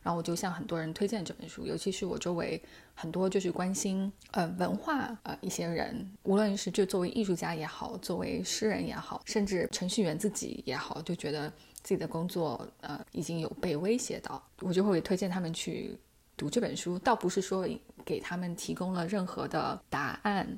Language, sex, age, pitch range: Chinese, female, 10-29, 175-210 Hz